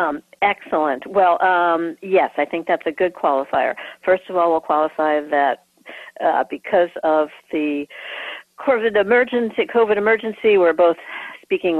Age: 50-69